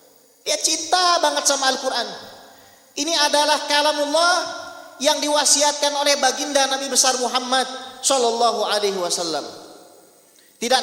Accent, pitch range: native, 205-275 Hz